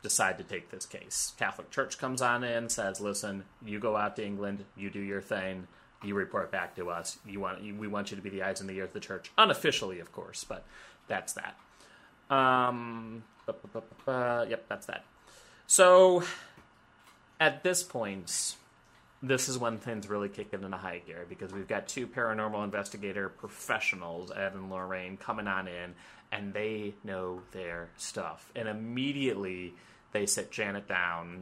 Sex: male